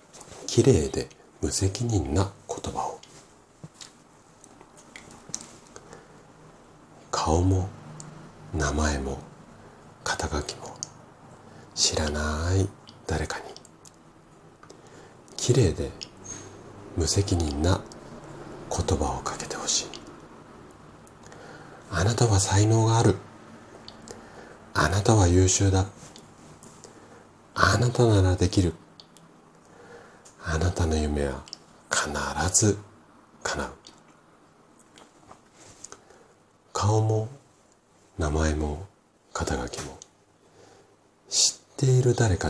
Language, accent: Japanese, native